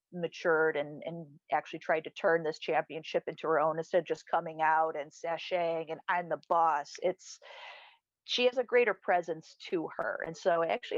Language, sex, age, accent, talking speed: English, female, 40-59, American, 185 wpm